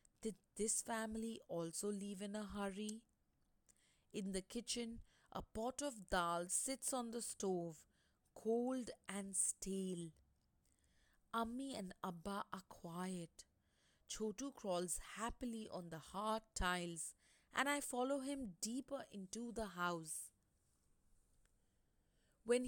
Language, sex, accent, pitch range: English, female, Indian, 175-235 Hz